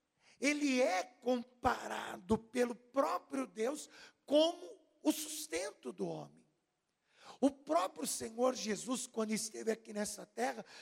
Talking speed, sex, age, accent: 110 wpm, male, 50-69, Brazilian